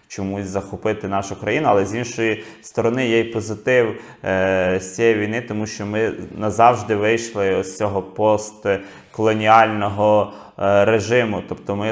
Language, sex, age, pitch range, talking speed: Ukrainian, male, 20-39, 100-115 Hz, 135 wpm